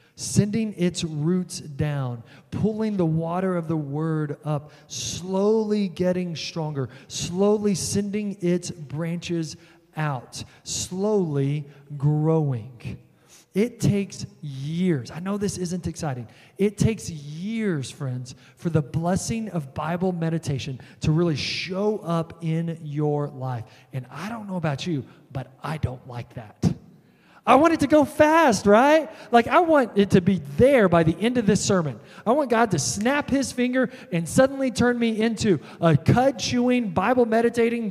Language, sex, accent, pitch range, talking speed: English, male, American, 145-205 Hz, 145 wpm